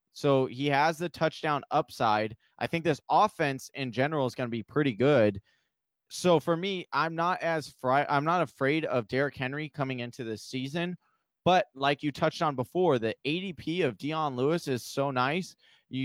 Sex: male